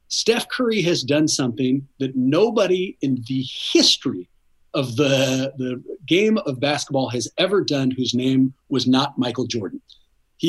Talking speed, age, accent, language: 150 wpm, 40-59, American, English